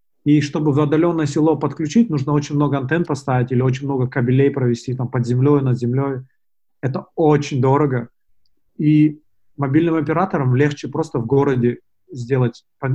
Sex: male